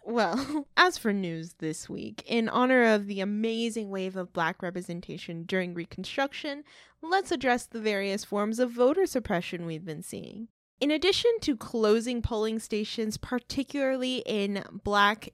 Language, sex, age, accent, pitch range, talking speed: English, female, 20-39, American, 200-275 Hz, 145 wpm